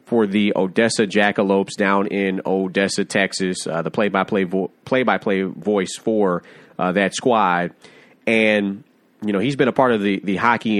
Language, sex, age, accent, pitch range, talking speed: English, male, 30-49, American, 95-110 Hz, 160 wpm